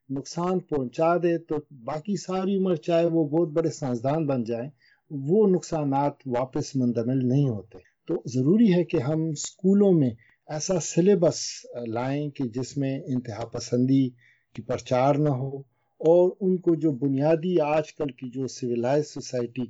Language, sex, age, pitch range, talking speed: Urdu, male, 50-69, 130-170 Hz, 150 wpm